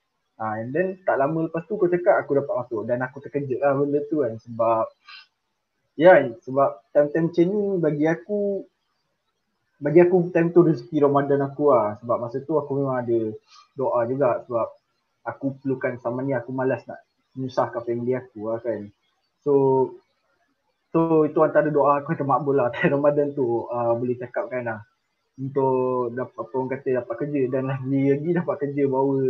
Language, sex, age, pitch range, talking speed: Malay, male, 20-39, 125-150 Hz, 180 wpm